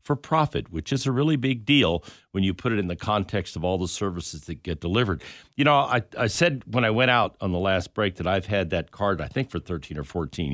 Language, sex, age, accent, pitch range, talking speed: English, male, 50-69, American, 85-115 Hz, 260 wpm